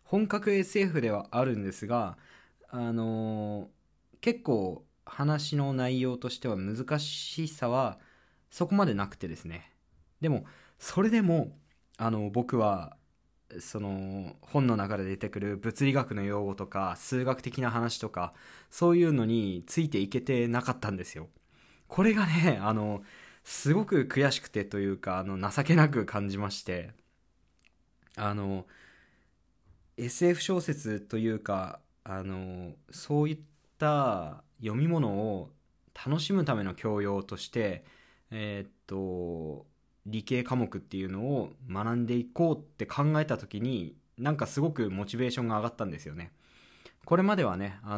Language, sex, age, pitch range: Japanese, male, 20-39, 100-140 Hz